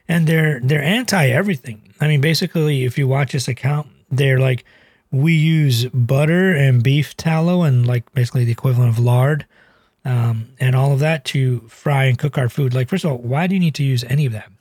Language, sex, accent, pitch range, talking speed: English, male, American, 125-150 Hz, 210 wpm